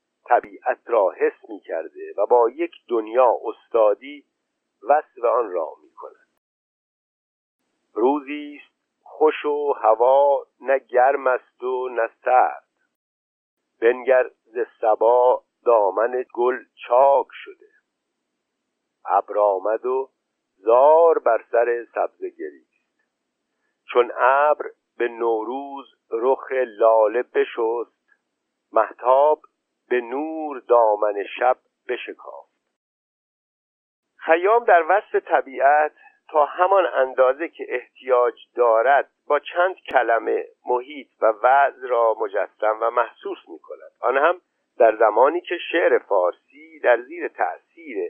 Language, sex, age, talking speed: Persian, male, 50-69, 105 wpm